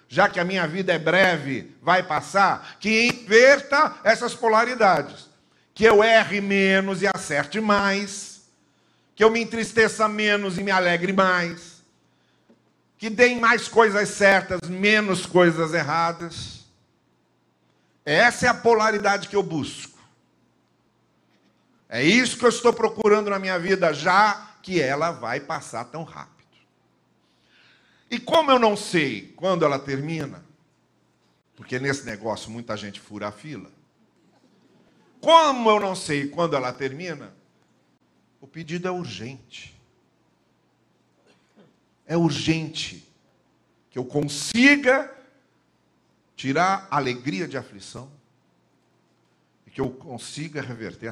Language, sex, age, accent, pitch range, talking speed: Portuguese, male, 50-69, Brazilian, 135-210 Hz, 120 wpm